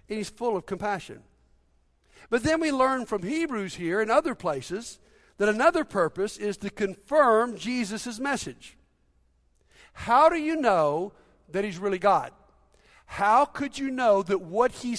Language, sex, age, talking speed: English, male, 60-79, 150 wpm